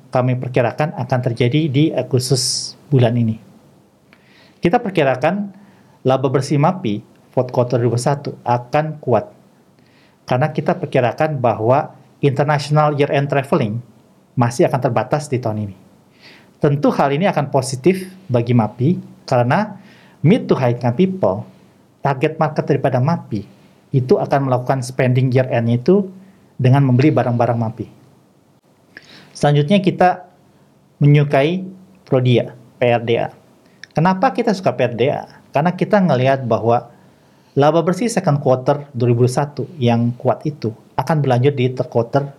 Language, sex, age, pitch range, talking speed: Indonesian, male, 40-59, 125-160 Hz, 115 wpm